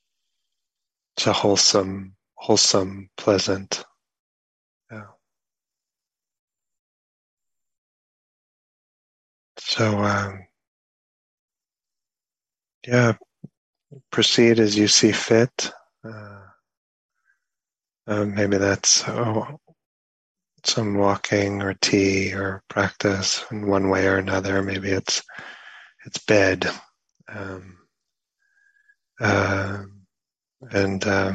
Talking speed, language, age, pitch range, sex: 70 wpm, English, 30-49, 95-105 Hz, male